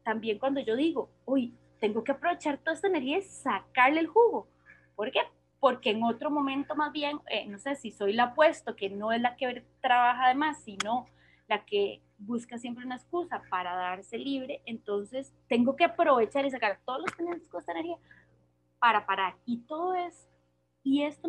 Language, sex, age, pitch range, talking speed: Spanish, female, 20-39, 210-275 Hz, 185 wpm